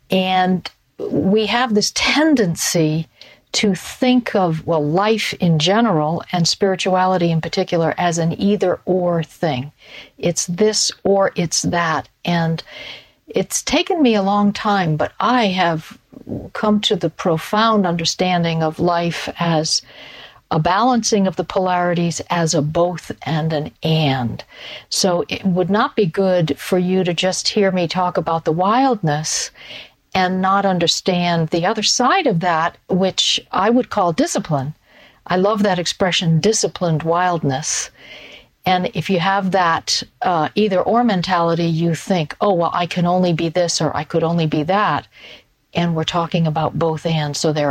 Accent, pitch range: American, 165-205 Hz